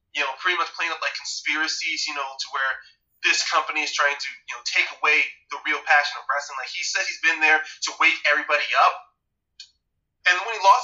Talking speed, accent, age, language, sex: 220 wpm, American, 20-39, English, male